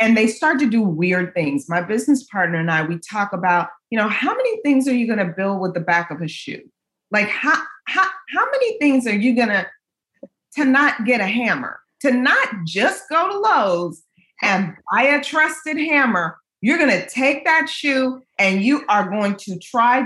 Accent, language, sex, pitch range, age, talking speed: American, English, female, 180-270 Hz, 40-59, 205 wpm